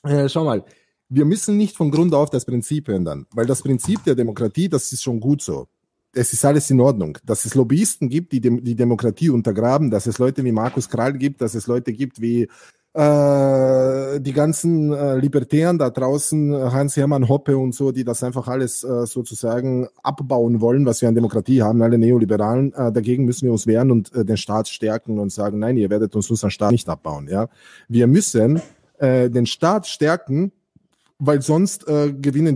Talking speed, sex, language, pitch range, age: 190 wpm, male, German, 115-145 Hz, 20-39